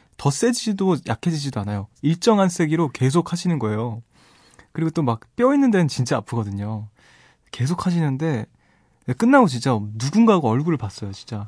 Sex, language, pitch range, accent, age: male, Korean, 110-150 Hz, native, 20-39